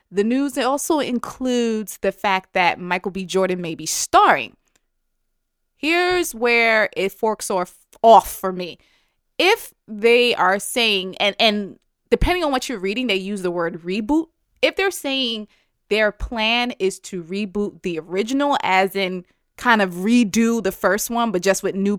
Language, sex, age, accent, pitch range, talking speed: English, female, 20-39, American, 185-230 Hz, 160 wpm